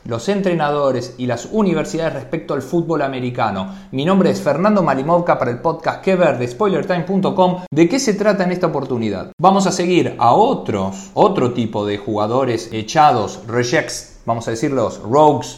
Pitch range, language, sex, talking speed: 125-185 Hz, Spanish, male, 160 wpm